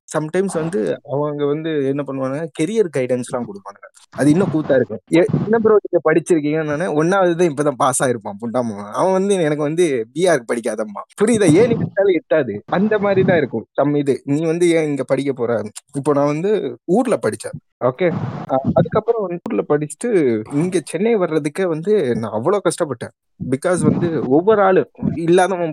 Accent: native